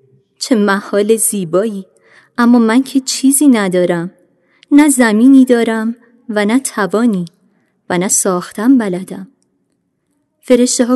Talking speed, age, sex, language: 105 wpm, 30-49, female, Persian